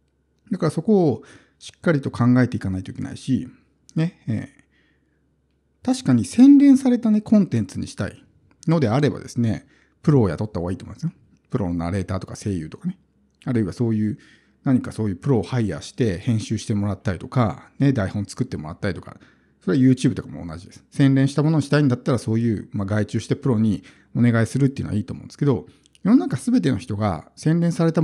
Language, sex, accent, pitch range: Japanese, male, native, 105-155 Hz